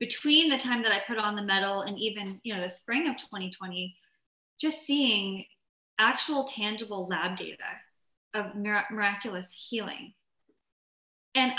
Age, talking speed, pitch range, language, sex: 20-39, 145 wpm, 190-225 Hz, English, female